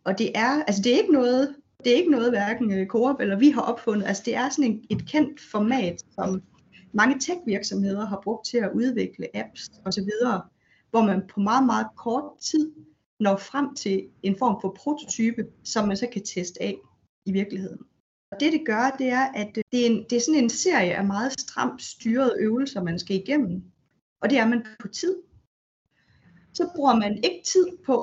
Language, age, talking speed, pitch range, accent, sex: Danish, 30-49, 190 wpm, 195-265 Hz, native, female